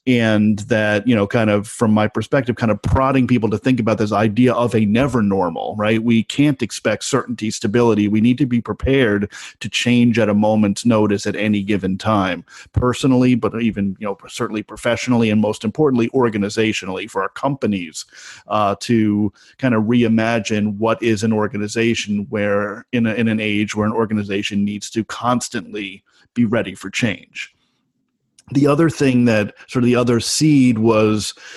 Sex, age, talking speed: male, 40-59, 175 wpm